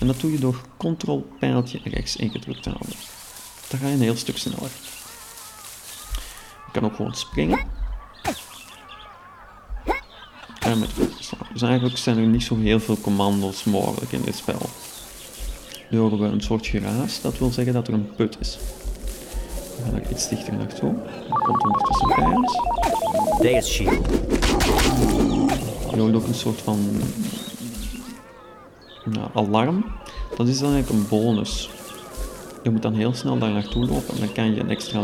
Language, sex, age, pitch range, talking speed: Dutch, male, 40-59, 110-140 Hz, 160 wpm